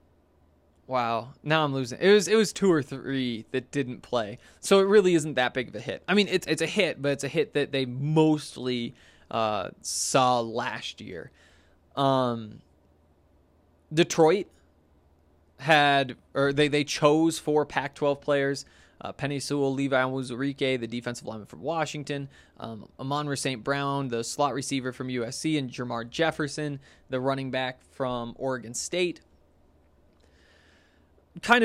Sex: male